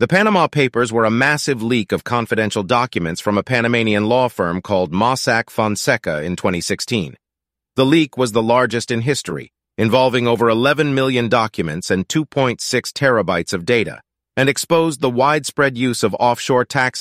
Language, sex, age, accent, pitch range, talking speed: English, male, 40-59, American, 105-135 Hz, 160 wpm